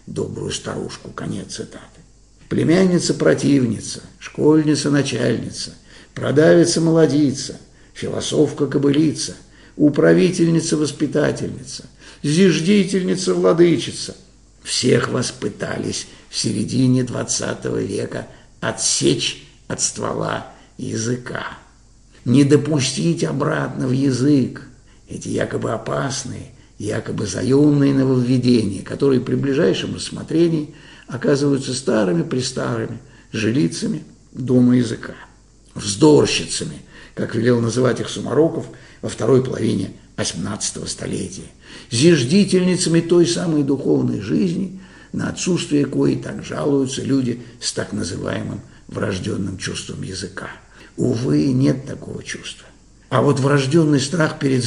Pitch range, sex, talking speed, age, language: 125-160 Hz, male, 85 wpm, 60-79, Russian